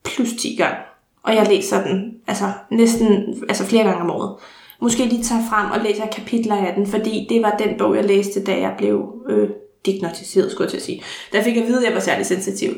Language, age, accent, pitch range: Danish, 20-39, native, 210-240 Hz